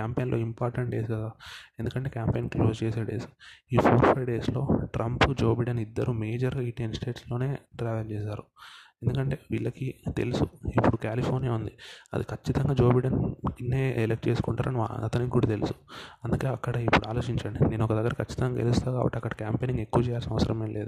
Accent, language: native, Telugu